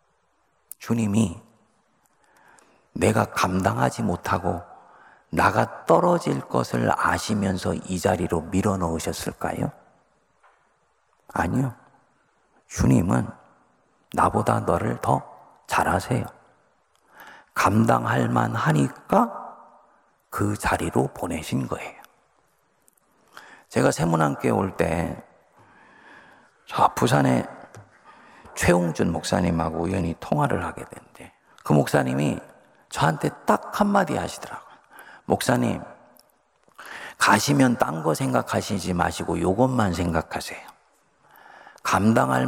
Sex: male